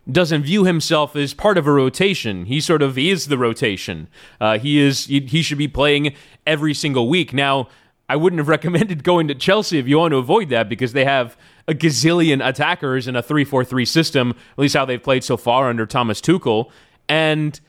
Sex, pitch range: male, 130-170 Hz